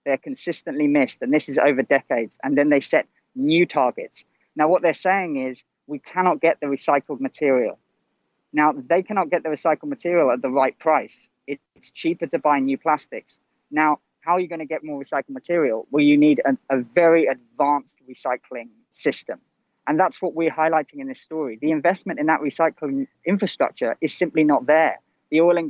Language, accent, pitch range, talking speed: English, British, 140-180 Hz, 190 wpm